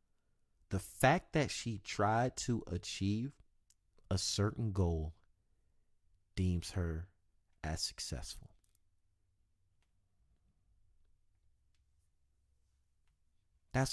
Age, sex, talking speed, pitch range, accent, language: 30-49, male, 65 wpm, 90-120 Hz, American, English